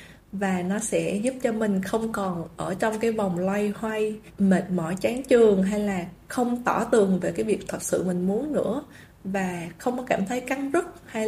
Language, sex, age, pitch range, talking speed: Vietnamese, female, 20-39, 190-235 Hz, 205 wpm